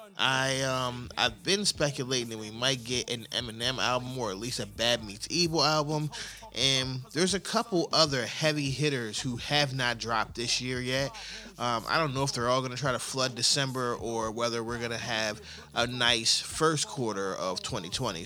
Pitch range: 115-145 Hz